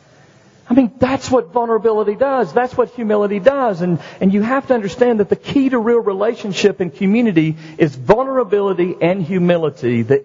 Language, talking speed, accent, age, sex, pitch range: English, 170 wpm, American, 50-69, male, 145-235 Hz